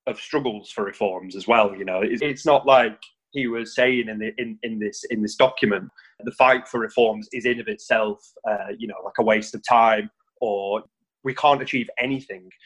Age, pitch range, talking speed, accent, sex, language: 20-39, 105-135 Hz, 205 wpm, British, male, English